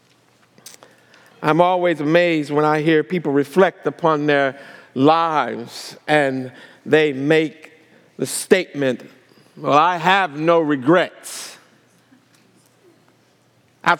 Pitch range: 165-240 Hz